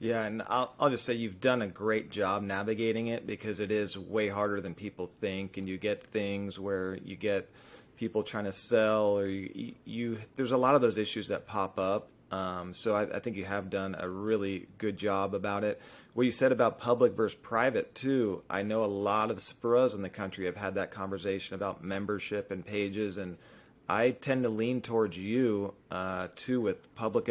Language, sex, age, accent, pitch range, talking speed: English, male, 30-49, American, 100-115 Hz, 205 wpm